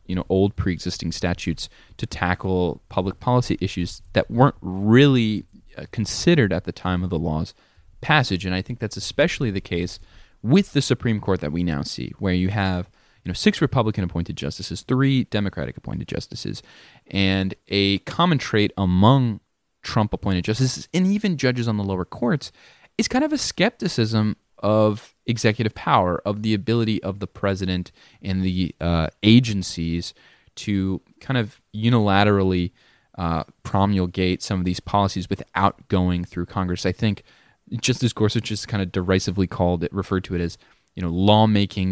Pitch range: 90-115 Hz